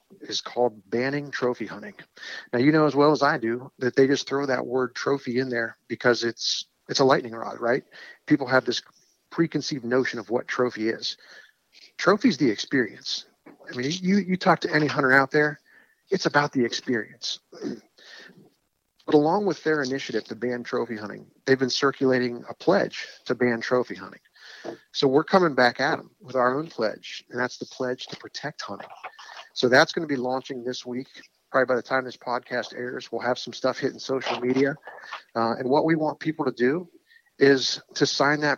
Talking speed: 195 wpm